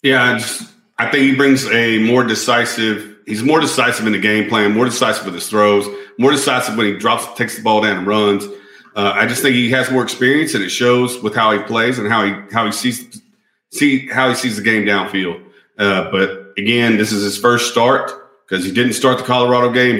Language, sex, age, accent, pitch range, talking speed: English, male, 40-59, American, 105-125 Hz, 230 wpm